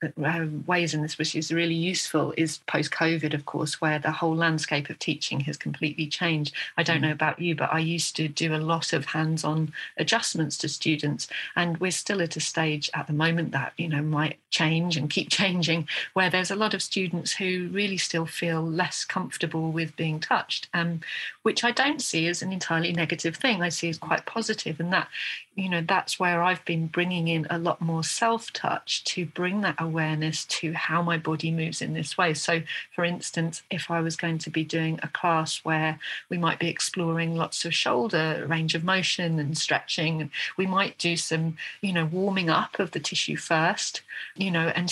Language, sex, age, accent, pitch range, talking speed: English, female, 40-59, British, 160-180 Hz, 205 wpm